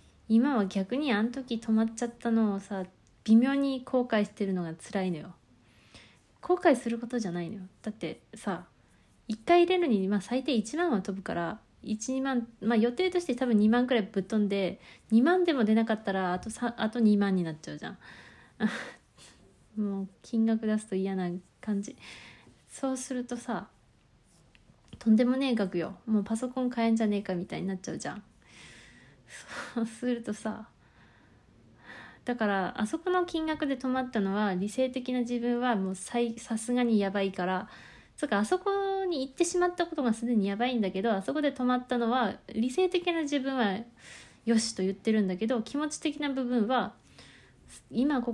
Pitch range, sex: 195-250 Hz, female